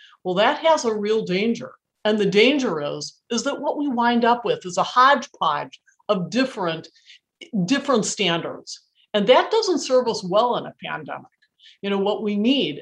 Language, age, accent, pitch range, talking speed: English, 50-69, American, 185-245 Hz, 180 wpm